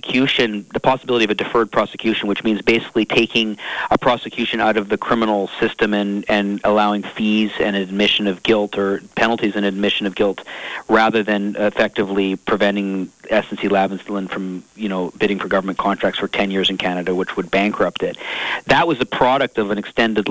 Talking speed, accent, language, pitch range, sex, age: 175 wpm, American, English, 100-115 Hz, male, 40-59